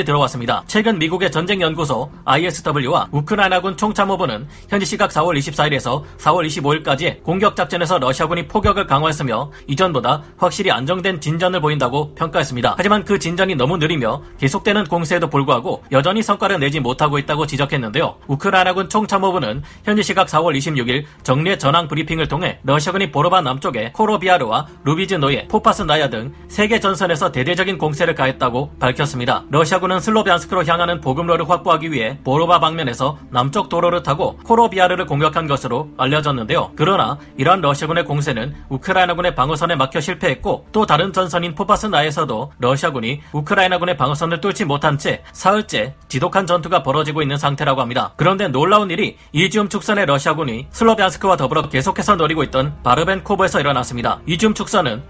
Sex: male